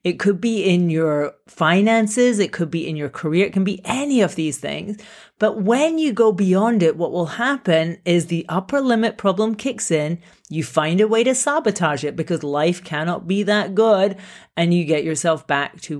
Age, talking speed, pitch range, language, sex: 30-49, 205 wpm, 145-200 Hz, English, female